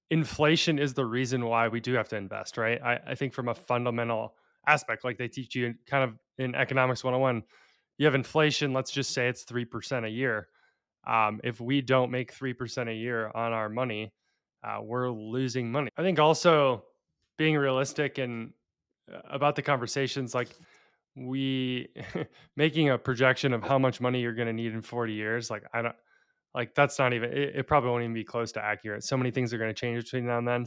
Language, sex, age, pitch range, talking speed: English, male, 20-39, 120-135 Hz, 205 wpm